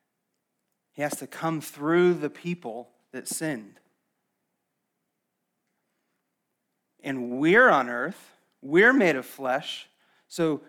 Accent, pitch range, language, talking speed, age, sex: American, 120-165 Hz, English, 95 wpm, 30-49, male